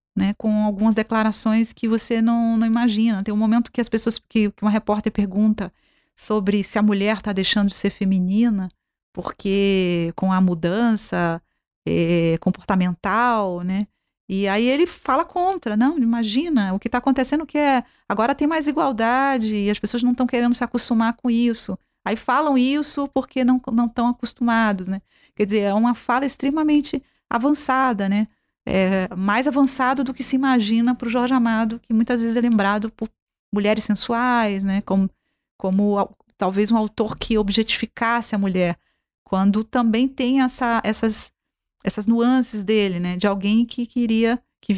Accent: Brazilian